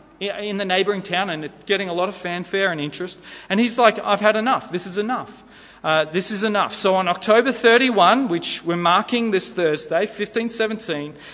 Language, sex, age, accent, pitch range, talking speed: English, male, 30-49, Australian, 165-220 Hz, 185 wpm